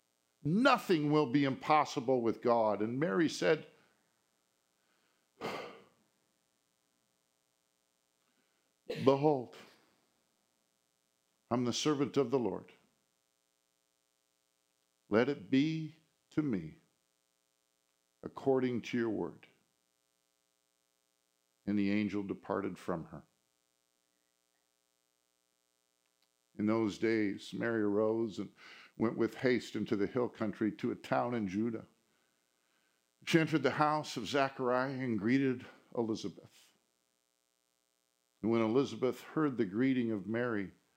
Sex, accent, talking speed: male, American, 95 wpm